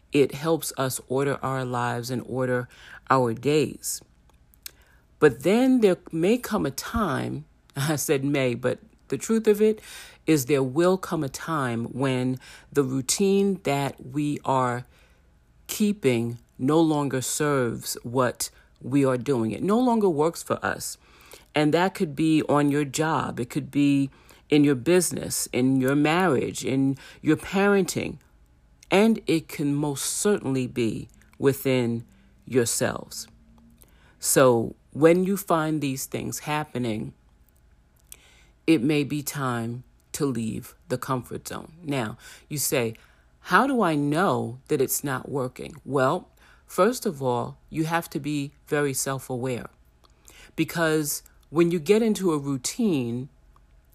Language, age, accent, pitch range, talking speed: English, 40-59, American, 120-160 Hz, 135 wpm